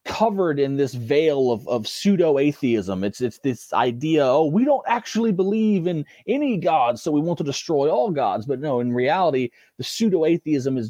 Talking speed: 180 wpm